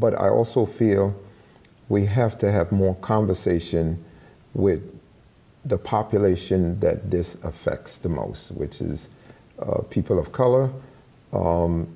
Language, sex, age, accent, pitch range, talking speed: English, male, 50-69, American, 90-115 Hz, 125 wpm